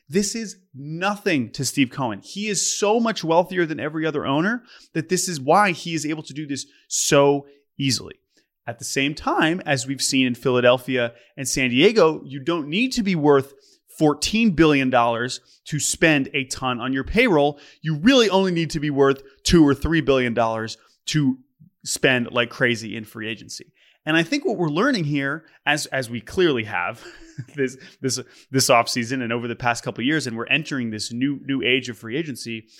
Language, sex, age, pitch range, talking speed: English, male, 30-49, 125-165 Hz, 190 wpm